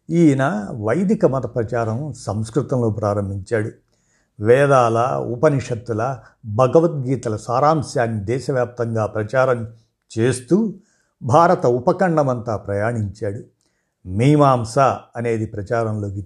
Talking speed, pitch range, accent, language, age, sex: 70 wpm, 115-145 Hz, native, Telugu, 50-69, male